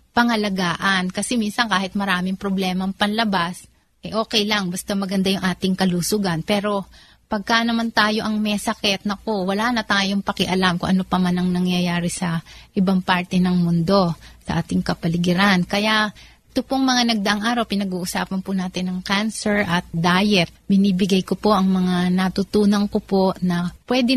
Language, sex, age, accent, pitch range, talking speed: Filipino, female, 30-49, native, 185-215 Hz, 160 wpm